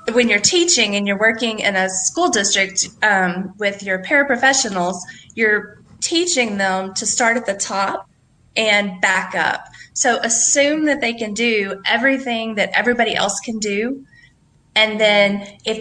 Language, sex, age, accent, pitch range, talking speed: English, female, 20-39, American, 195-240 Hz, 150 wpm